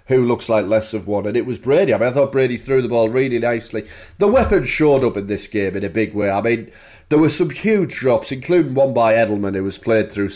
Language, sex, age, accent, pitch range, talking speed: English, male, 30-49, British, 110-185 Hz, 265 wpm